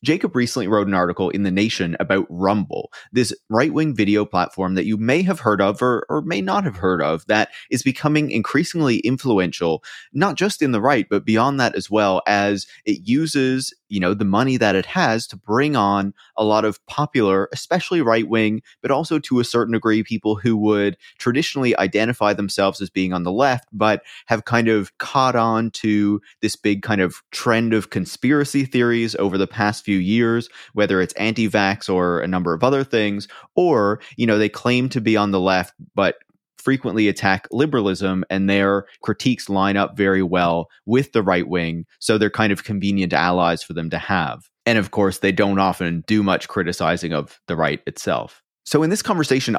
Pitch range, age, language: 95-115 Hz, 30-49, English